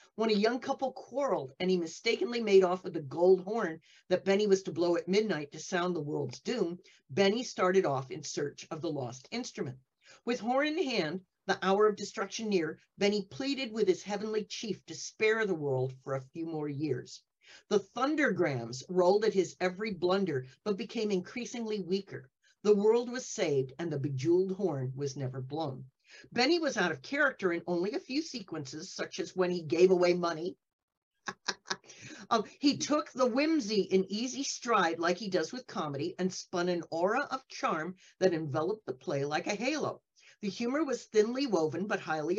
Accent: American